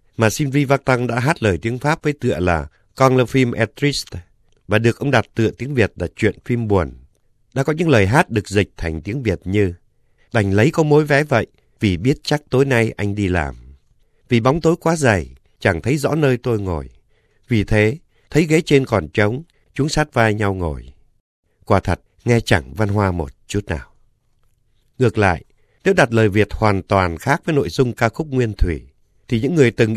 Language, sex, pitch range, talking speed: Vietnamese, male, 95-130 Hz, 210 wpm